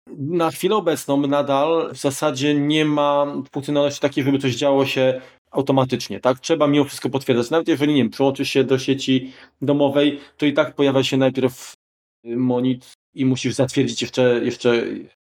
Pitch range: 115-145 Hz